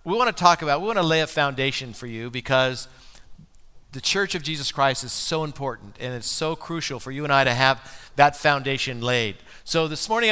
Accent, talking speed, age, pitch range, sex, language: American, 210 wpm, 50-69, 135-175 Hz, male, English